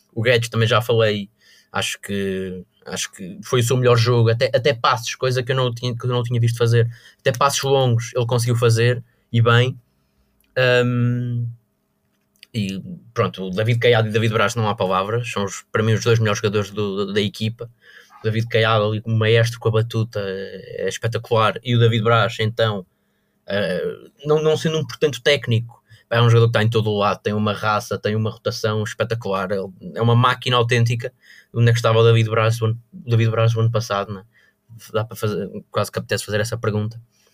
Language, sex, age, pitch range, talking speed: Portuguese, male, 20-39, 110-130 Hz, 190 wpm